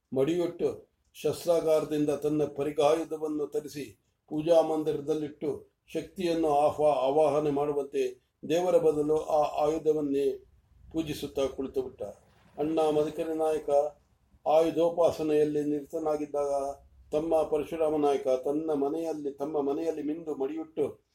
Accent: Indian